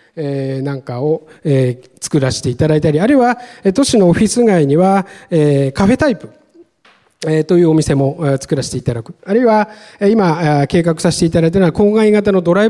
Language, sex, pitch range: Japanese, male, 145-210 Hz